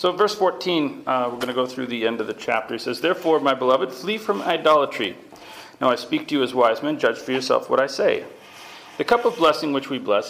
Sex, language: male, English